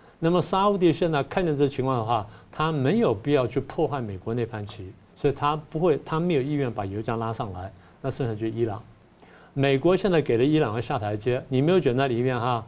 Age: 50-69